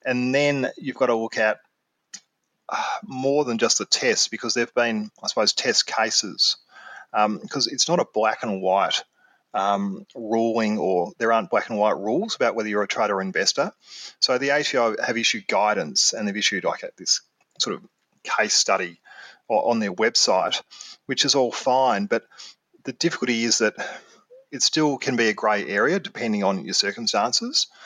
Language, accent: English, Australian